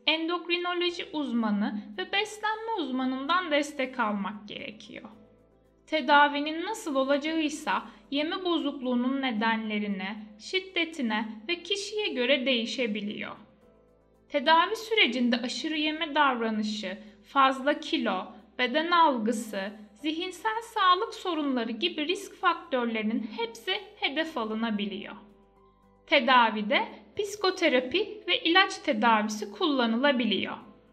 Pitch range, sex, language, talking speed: 230-325 Hz, female, Turkish, 85 wpm